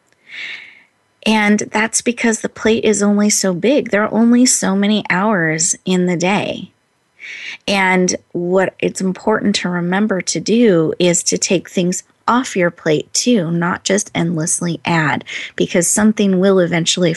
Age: 30-49